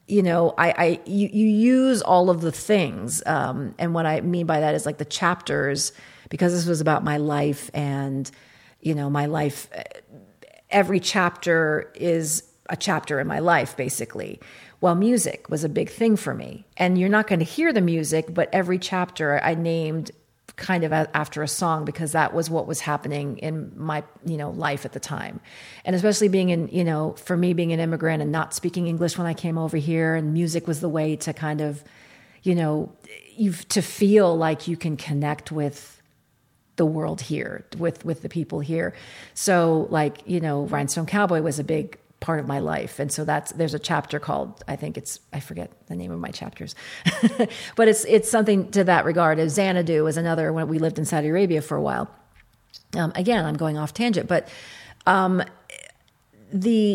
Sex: female